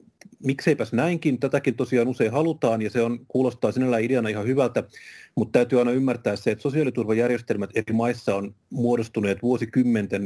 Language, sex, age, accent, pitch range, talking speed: Finnish, male, 30-49, native, 100-120 Hz, 150 wpm